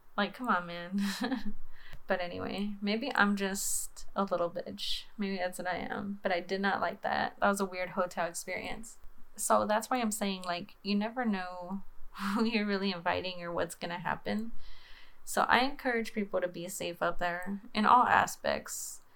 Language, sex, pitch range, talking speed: English, female, 180-215 Hz, 180 wpm